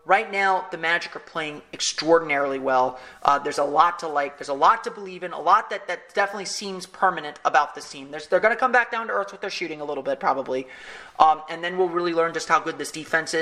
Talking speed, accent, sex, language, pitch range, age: 255 wpm, American, male, English, 155-195 Hz, 30-49